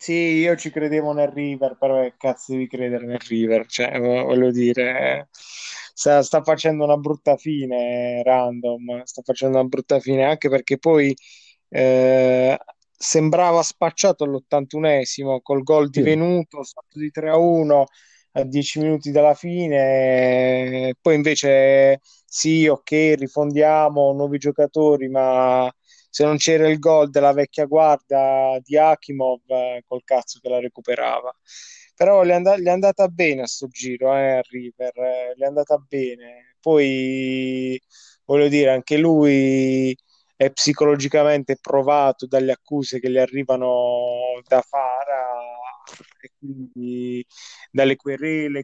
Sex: male